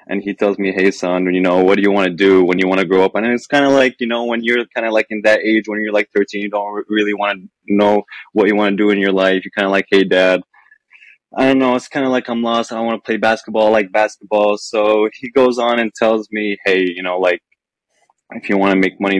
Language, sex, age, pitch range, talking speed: English, male, 20-39, 95-110 Hz, 290 wpm